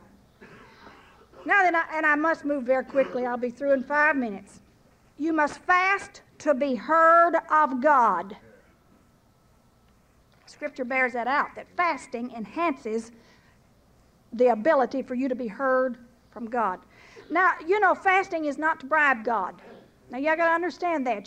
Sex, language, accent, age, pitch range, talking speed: female, English, American, 50-69, 255-340 Hz, 150 wpm